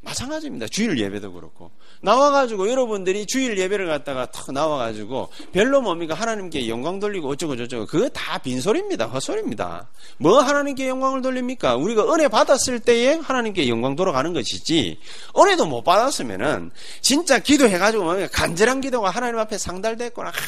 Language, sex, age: Korean, male, 30-49